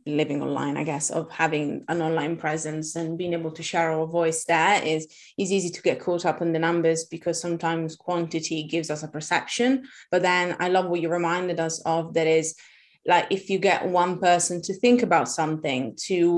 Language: English